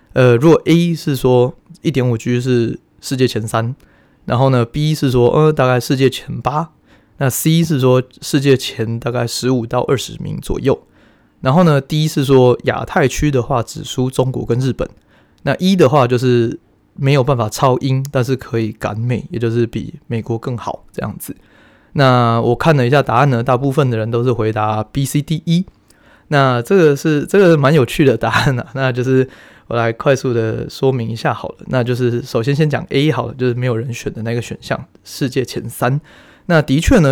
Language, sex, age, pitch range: Chinese, male, 20-39, 120-145 Hz